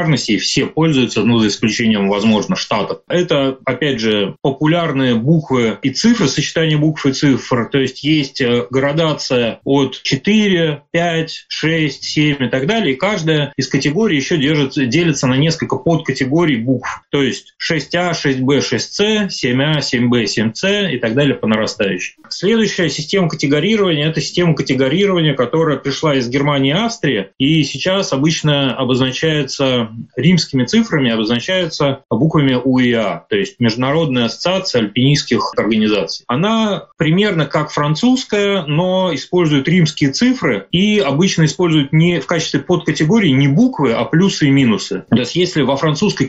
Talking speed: 145 wpm